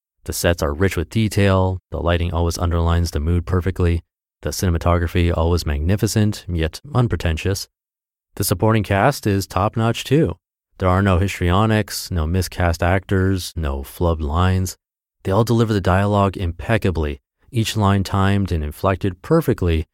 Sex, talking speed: male, 140 wpm